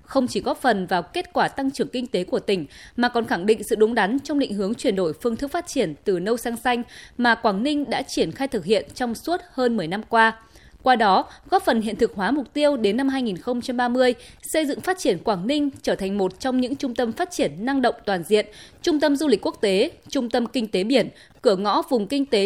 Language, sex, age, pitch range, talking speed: Vietnamese, female, 20-39, 205-270 Hz, 250 wpm